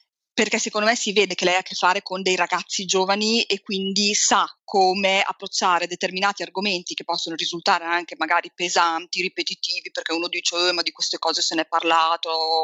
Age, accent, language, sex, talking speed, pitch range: 20-39, native, Italian, female, 195 wpm, 180-235 Hz